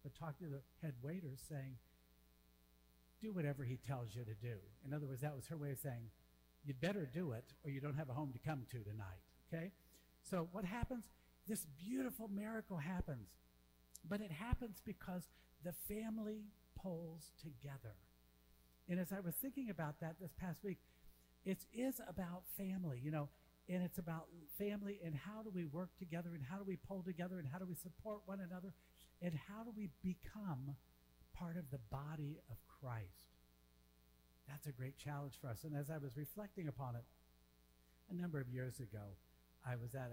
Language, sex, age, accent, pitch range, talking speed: English, male, 60-79, American, 110-180 Hz, 185 wpm